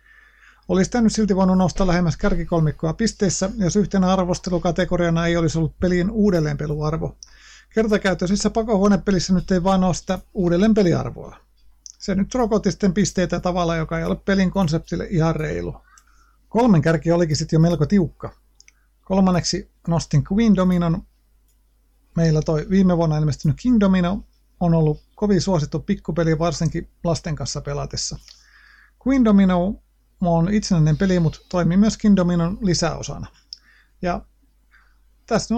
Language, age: Finnish, 50-69